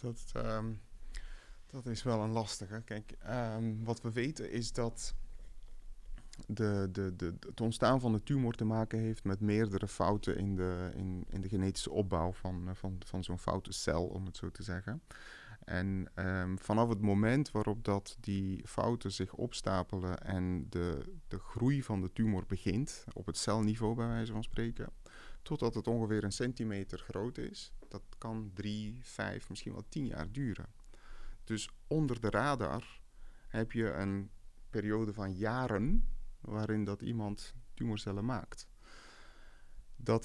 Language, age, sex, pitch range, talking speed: Dutch, 30-49, male, 95-115 Hz, 140 wpm